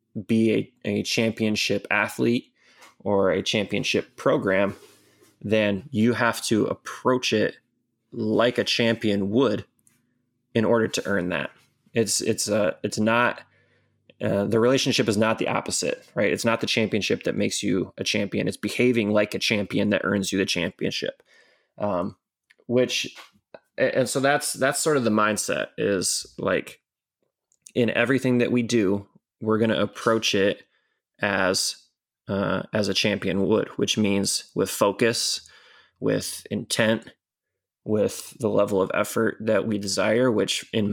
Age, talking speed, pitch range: 20-39, 145 wpm, 105-120 Hz